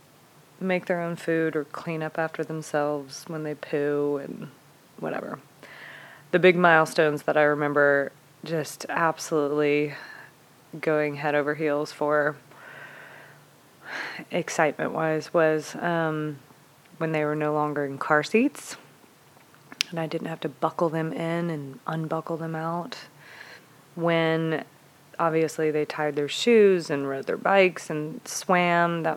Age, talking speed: 20-39, 130 wpm